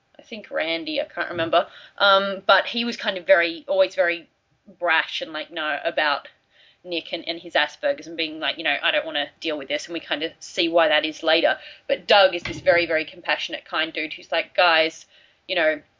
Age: 20-39